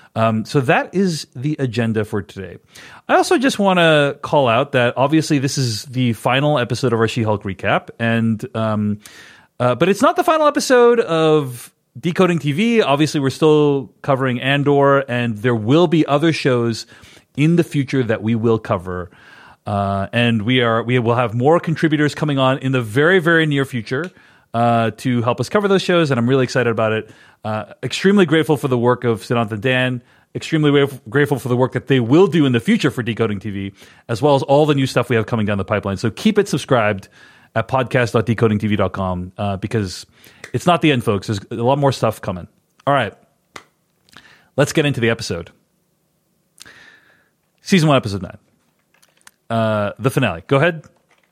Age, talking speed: 30-49, 185 wpm